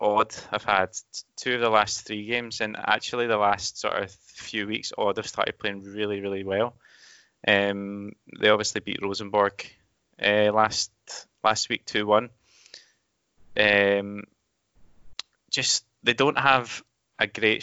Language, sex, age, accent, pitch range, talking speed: English, male, 20-39, British, 100-115 Hz, 140 wpm